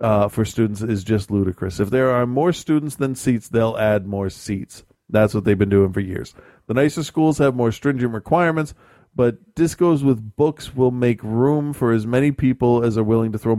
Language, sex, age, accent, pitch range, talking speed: English, male, 40-59, American, 100-130 Hz, 210 wpm